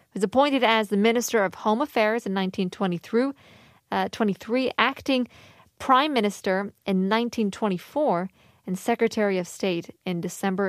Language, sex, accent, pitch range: Korean, female, American, 195-250 Hz